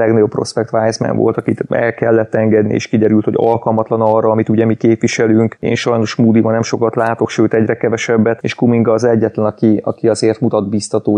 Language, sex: Hungarian, male